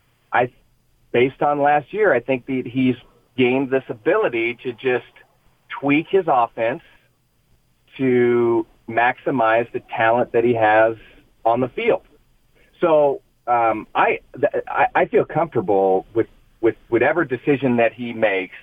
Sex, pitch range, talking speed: male, 110-135 Hz, 130 wpm